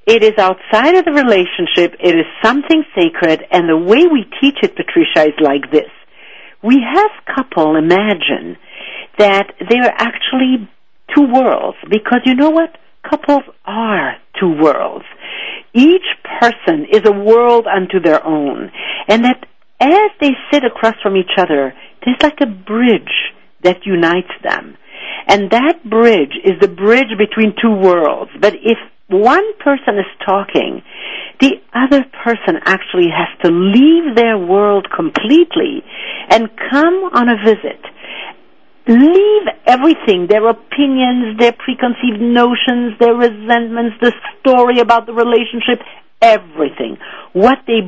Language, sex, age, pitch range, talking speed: English, female, 60-79, 190-280 Hz, 135 wpm